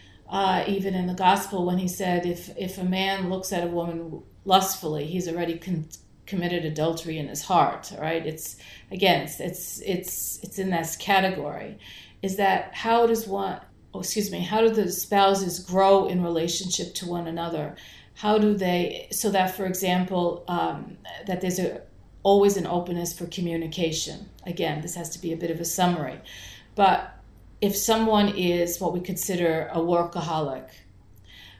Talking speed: 165 wpm